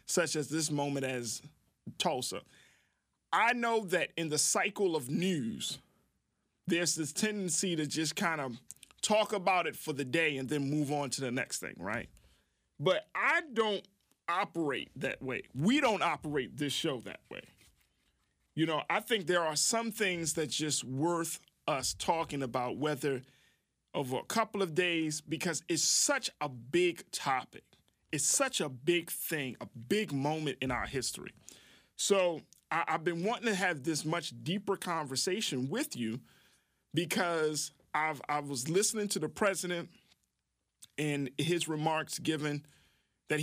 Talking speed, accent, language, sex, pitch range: 155 wpm, American, English, male, 135-175 Hz